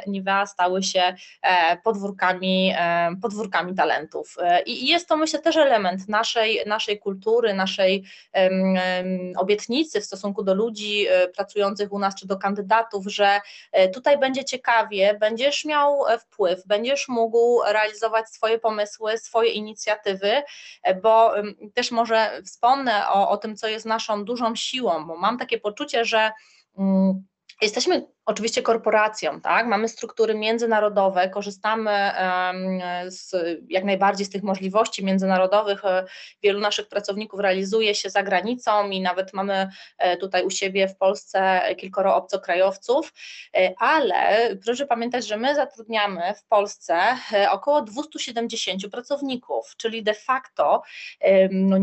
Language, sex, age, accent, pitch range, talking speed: Polish, female, 20-39, native, 190-230 Hz, 120 wpm